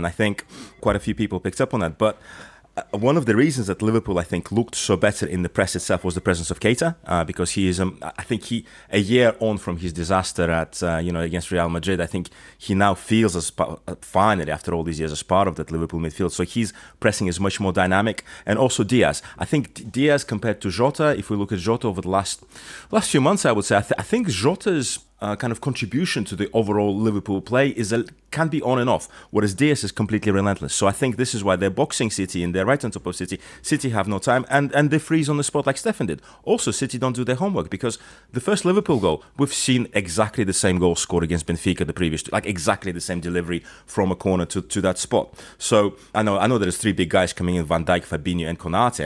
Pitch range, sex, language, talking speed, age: 90-115 Hz, male, English, 255 wpm, 30-49